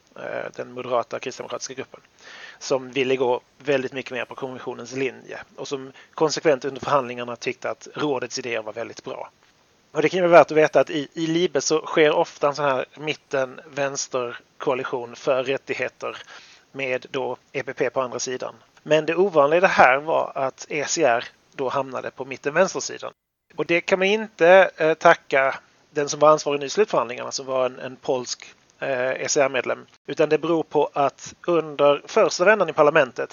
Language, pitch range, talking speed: Swedish, 130-155 Hz, 165 wpm